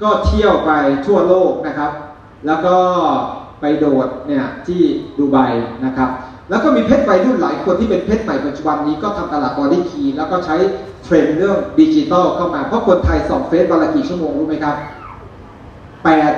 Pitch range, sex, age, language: 150-240 Hz, male, 30-49, Thai